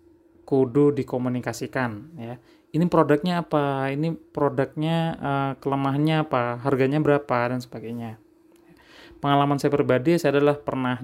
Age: 20-39